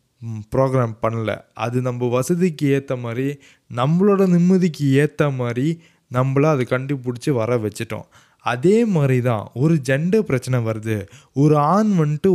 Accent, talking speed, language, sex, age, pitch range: native, 125 wpm, Tamil, male, 20-39, 125-165 Hz